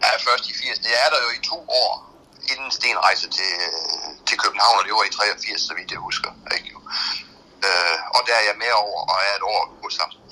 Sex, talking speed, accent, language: male, 225 wpm, native, Danish